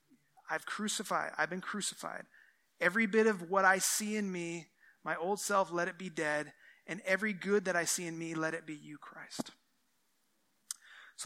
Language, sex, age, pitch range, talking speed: English, male, 30-49, 165-200 Hz, 180 wpm